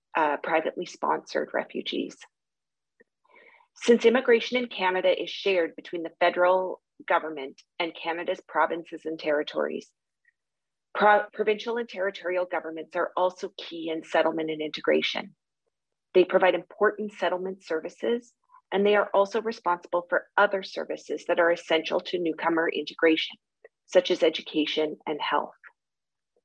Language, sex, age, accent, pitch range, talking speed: English, female, 40-59, American, 170-225 Hz, 125 wpm